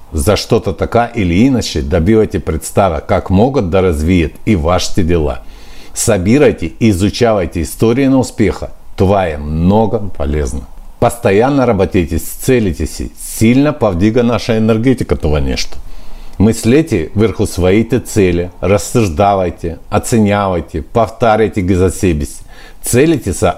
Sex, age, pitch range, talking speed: male, 60-79, 80-110 Hz, 105 wpm